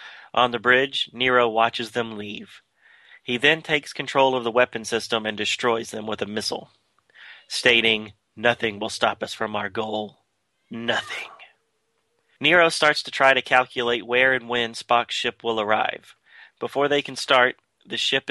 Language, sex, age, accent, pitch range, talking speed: English, male, 30-49, American, 115-125 Hz, 160 wpm